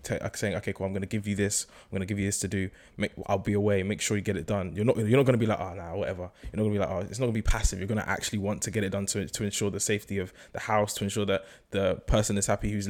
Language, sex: English, male